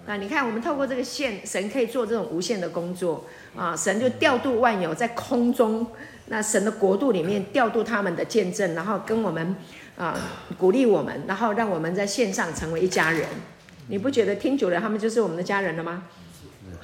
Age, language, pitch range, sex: 50-69, Chinese, 180-240 Hz, female